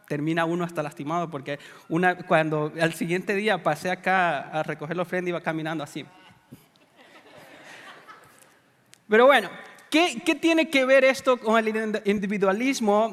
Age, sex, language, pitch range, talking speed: 30-49, male, English, 175-230 Hz, 135 wpm